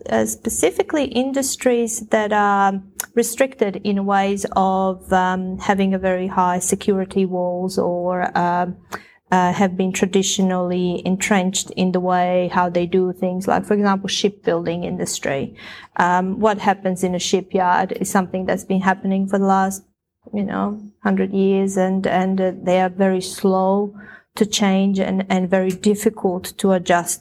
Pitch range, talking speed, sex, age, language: 185-205 Hz, 150 wpm, female, 20-39, English